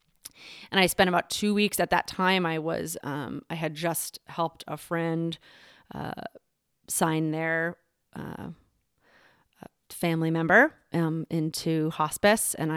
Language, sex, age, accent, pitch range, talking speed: English, female, 30-49, American, 160-205 Hz, 130 wpm